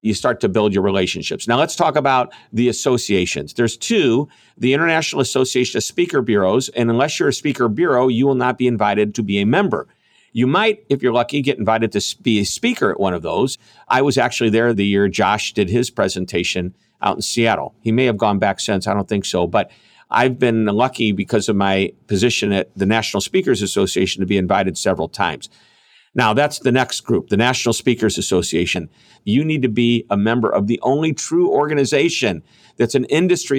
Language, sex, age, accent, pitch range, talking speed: English, male, 50-69, American, 105-135 Hz, 205 wpm